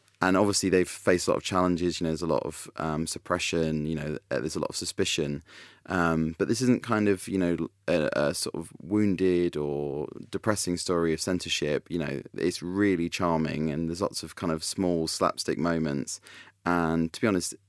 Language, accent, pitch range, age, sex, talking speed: English, British, 75-90 Hz, 30-49, male, 200 wpm